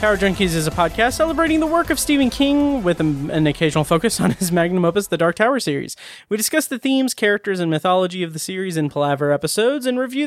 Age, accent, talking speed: 30-49, American, 220 wpm